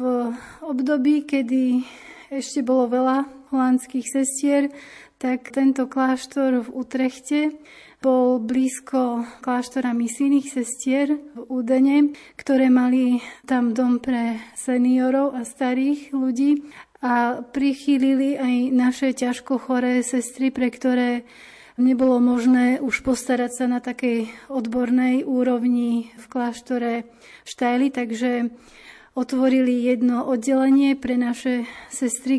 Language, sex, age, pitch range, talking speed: Slovak, female, 30-49, 240-260 Hz, 105 wpm